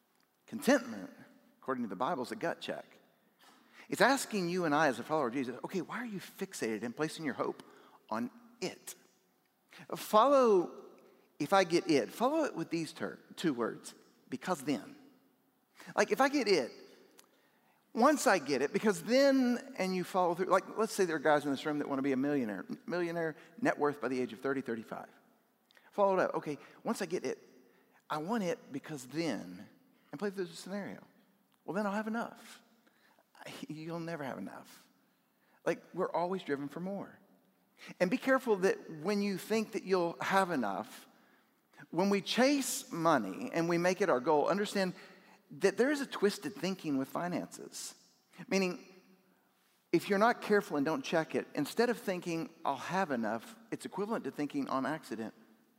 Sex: male